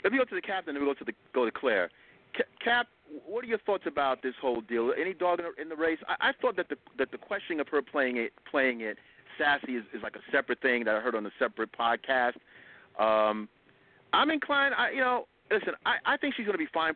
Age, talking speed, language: 40-59, 250 wpm, English